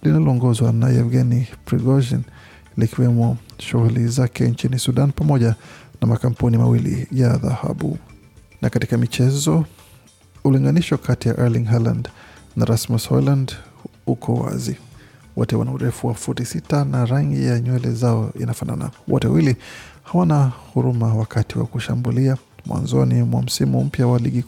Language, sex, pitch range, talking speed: Swahili, male, 115-130 Hz, 125 wpm